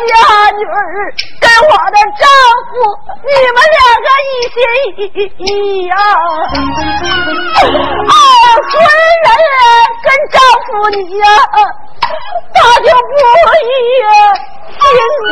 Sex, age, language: female, 40-59, Chinese